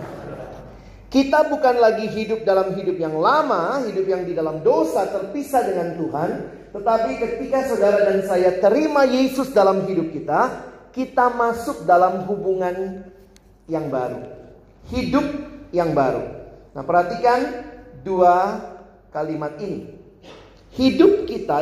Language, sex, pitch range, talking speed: Indonesian, male, 150-210 Hz, 115 wpm